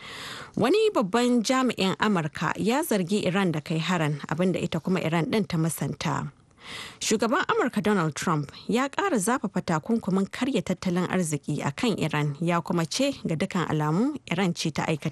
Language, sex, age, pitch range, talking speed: English, female, 30-49, 160-230 Hz, 125 wpm